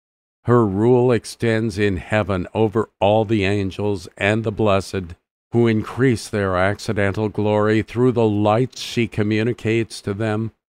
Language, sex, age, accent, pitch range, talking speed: English, male, 50-69, American, 95-115 Hz, 135 wpm